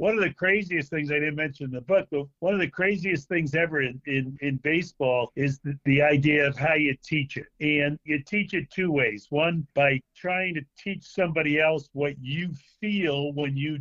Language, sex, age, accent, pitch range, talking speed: English, male, 50-69, American, 135-165 Hz, 215 wpm